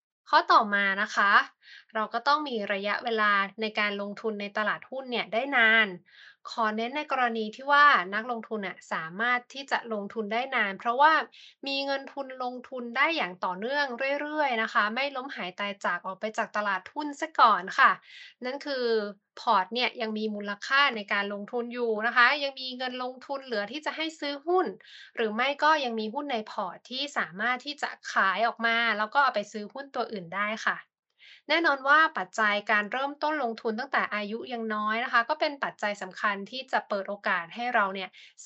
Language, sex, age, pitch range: Thai, female, 20-39, 210-275 Hz